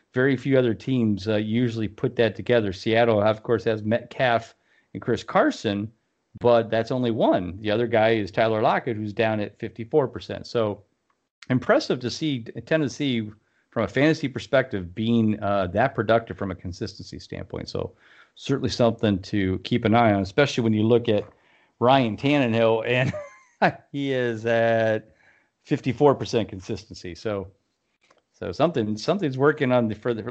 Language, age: English, 40-59